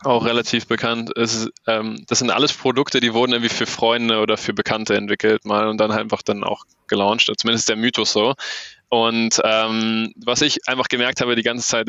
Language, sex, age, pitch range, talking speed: German, male, 20-39, 110-125 Hz, 190 wpm